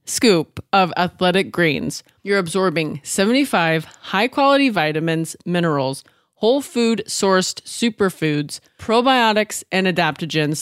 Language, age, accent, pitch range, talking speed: English, 20-39, American, 170-215 Hz, 90 wpm